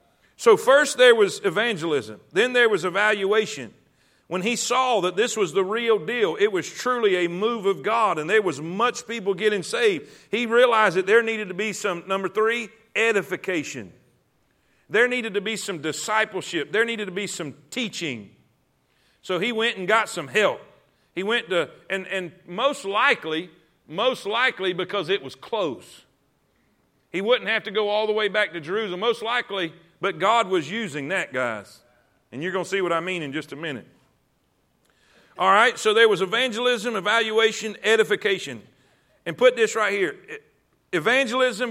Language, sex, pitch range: English, male, 175-225 Hz